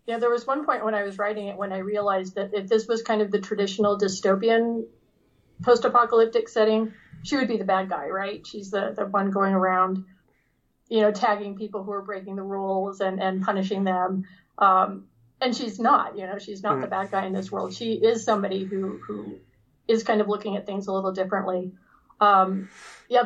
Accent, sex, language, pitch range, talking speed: American, female, English, 195-220 Hz, 210 wpm